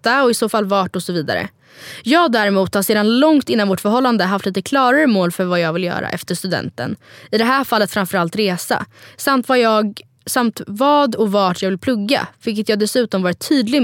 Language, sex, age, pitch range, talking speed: Swedish, female, 20-39, 190-250 Hz, 210 wpm